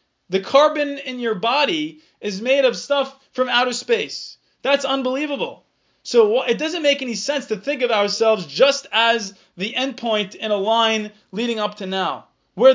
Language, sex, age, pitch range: English, male, 20-39, 205-265 Hz